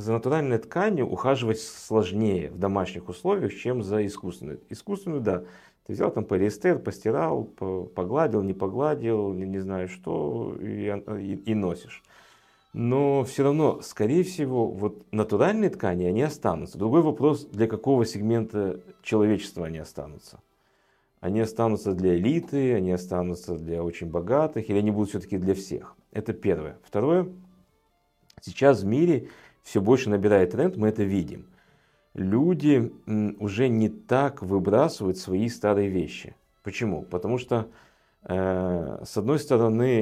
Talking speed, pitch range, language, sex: 135 wpm, 95-120 Hz, Russian, male